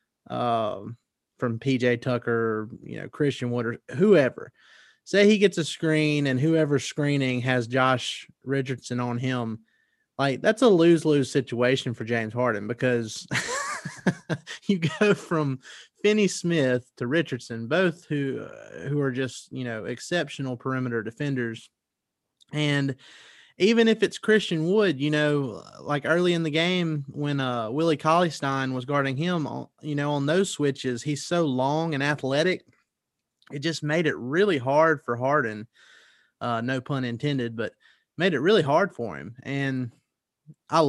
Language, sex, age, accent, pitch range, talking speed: English, male, 30-49, American, 125-155 Hz, 145 wpm